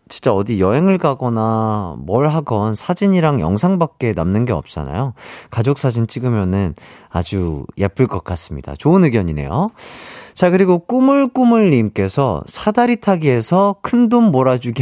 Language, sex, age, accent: Korean, male, 30-49, native